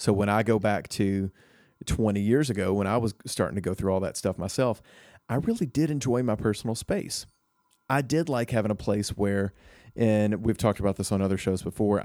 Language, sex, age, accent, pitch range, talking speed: English, male, 30-49, American, 95-115 Hz, 215 wpm